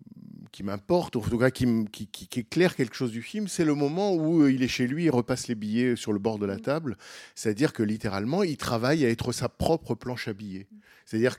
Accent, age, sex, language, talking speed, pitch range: French, 50-69, male, French, 230 wpm, 105-140 Hz